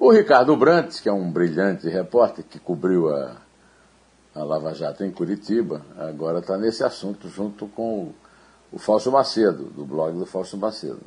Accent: Brazilian